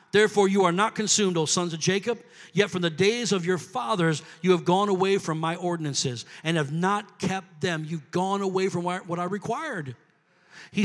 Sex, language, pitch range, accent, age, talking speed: male, English, 180-250 Hz, American, 50-69, 200 wpm